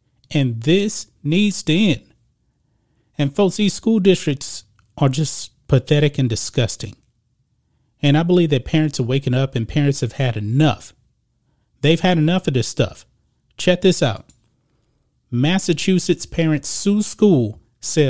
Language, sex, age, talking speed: English, male, 30-49, 140 wpm